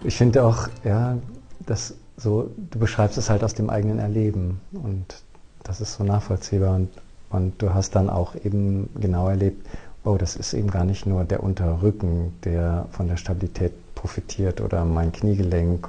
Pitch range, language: 90-105 Hz, German